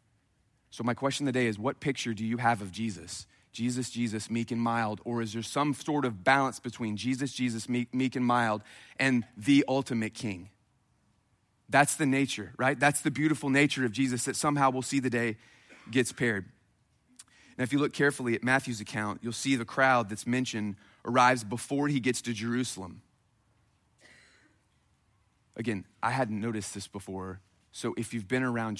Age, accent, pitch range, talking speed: 30-49, American, 115-140 Hz, 175 wpm